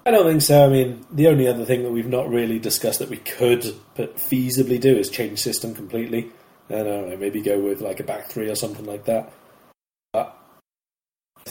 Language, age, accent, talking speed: English, 20-39, British, 205 wpm